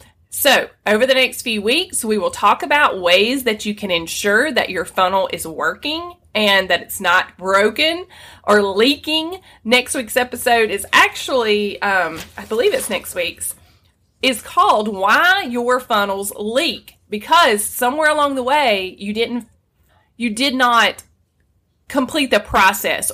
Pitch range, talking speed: 195-275 Hz, 145 wpm